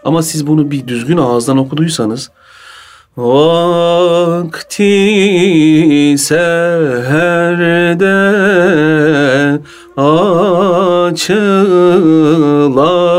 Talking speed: 45 wpm